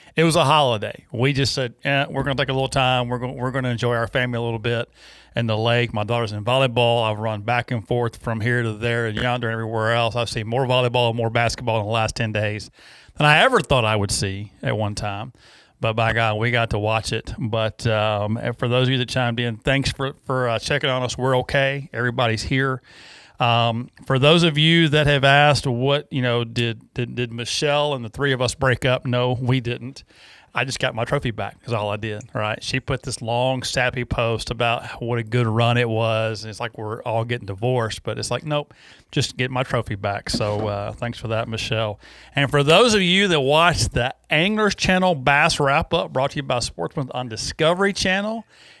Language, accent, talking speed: English, American, 230 wpm